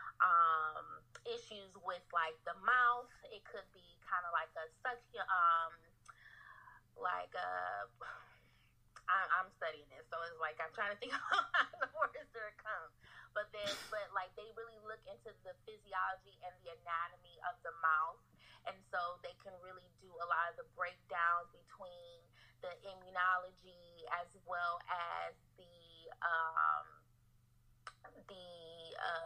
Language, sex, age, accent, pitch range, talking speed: English, female, 20-39, American, 165-200 Hz, 145 wpm